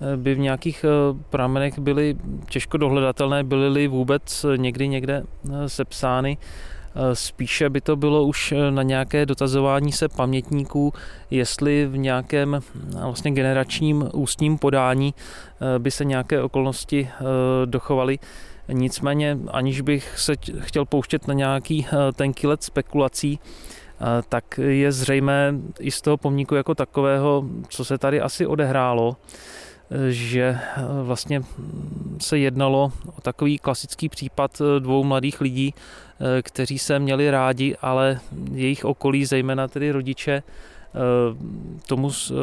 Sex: male